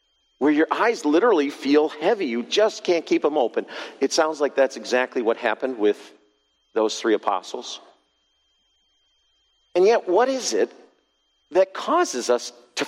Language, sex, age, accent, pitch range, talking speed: English, male, 50-69, American, 115-170 Hz, 150 wpm